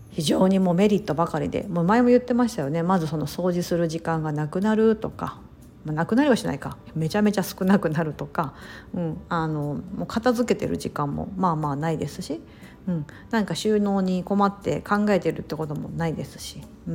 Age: 50-69